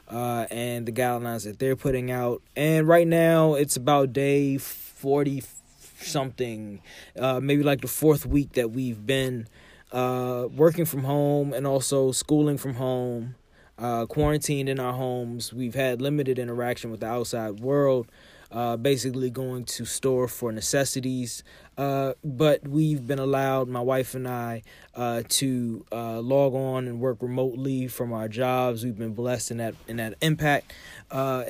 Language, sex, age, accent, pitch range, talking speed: English, male, 20-39, American, 120-140 Hz, 160 wpm